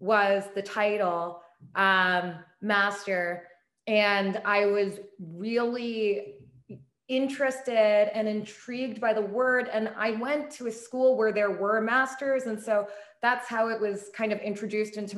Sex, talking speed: female, 140 wpm